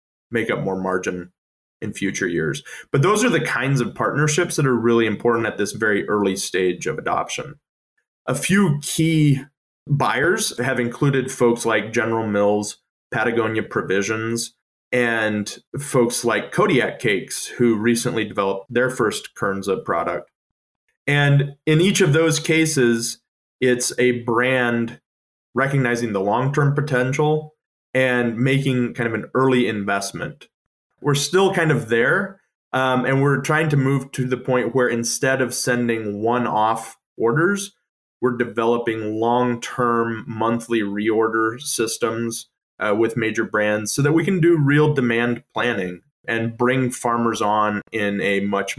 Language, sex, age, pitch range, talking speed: English, male, 20-39, 110-135 Hz, 140 wpm